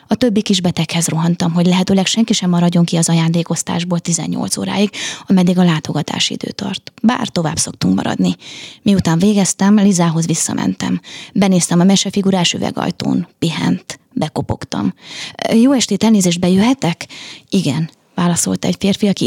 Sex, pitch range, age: female, 170-205 Hz, 20-39